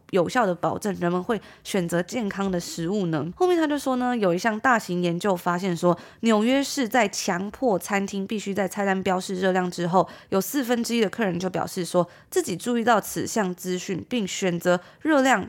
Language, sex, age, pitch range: Chinese, female, 20-39, 180-235 Hz